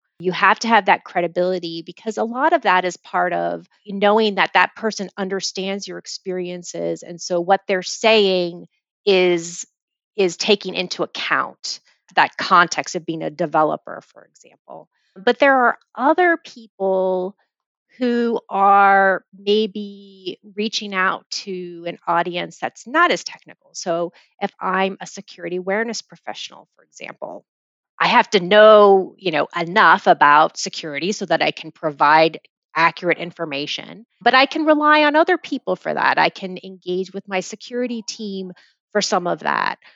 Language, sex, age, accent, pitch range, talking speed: English, female, 30-49, American, 180-215 Hz, 150 wpm